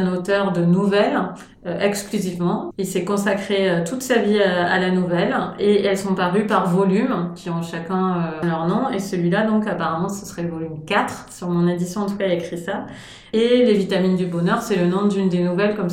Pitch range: 175-210 Hz